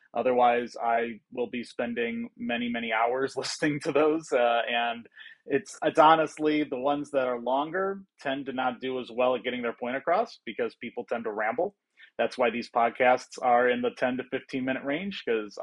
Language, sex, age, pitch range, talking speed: English, male, 30-49, 130-185 Hz, 190 wpm